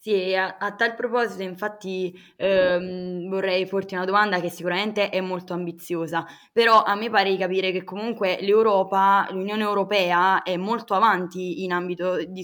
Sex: female